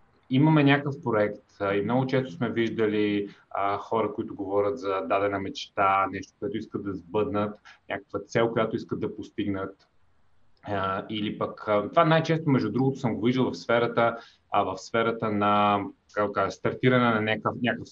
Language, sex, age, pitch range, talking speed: Bulgarian, male, 30-49, 105-130 Hz, 145 wpm